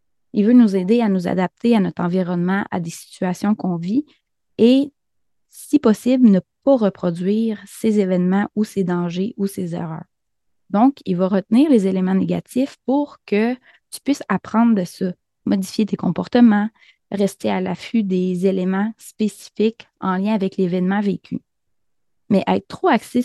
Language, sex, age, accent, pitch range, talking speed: French, female, 20-39, Canadian, 185-230 Hz, 155 wpm